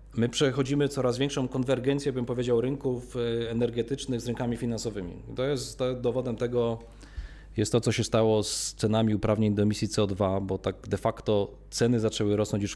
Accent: native